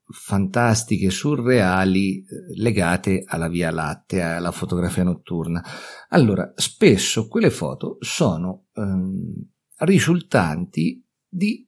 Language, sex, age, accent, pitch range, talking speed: Italian, male, 50-69, native, 85-125 Hz, 85 wpm